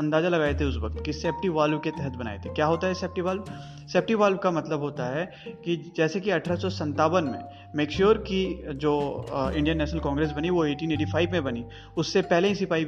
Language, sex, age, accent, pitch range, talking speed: Hindi, male, 30-49, native, 145-180 Hz, 215 wpm